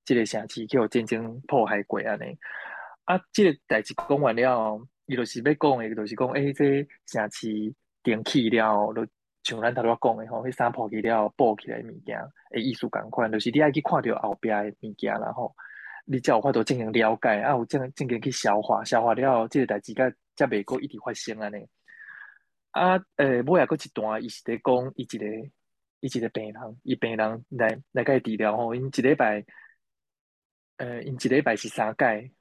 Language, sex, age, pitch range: Chinese, male, 20-39, 110-135 Hz